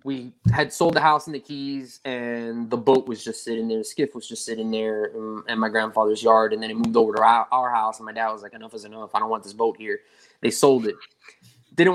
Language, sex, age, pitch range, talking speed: English, male, 20-39, 115-145 Hz, 260 wpm